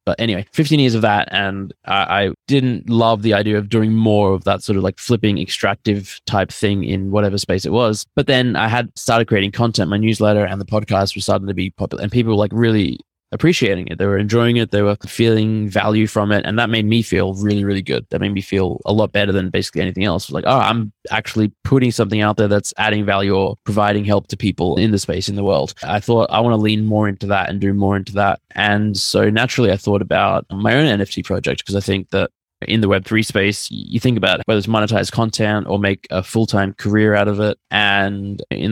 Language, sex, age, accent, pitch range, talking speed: English, male, 20-39, Australian, 100-110 Hz, 235 wpm